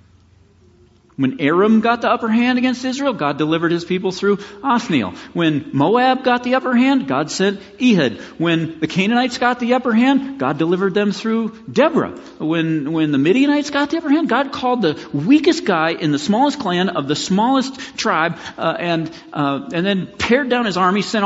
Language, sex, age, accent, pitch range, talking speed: English, male, 40-59, American, 160-245 Hz, 185 wpm